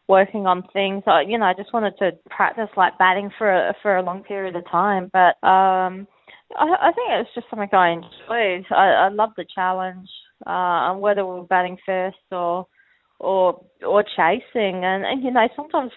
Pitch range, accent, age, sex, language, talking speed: 180-205 Hz, Australian, 20-39, female, English, 190 wpm